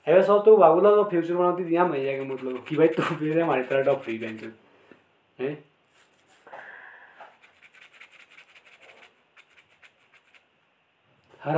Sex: male